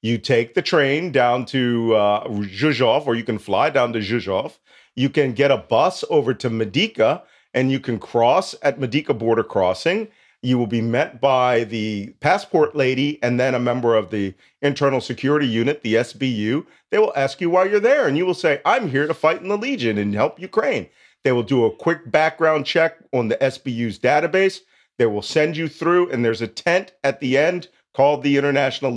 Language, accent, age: English, American, 40-59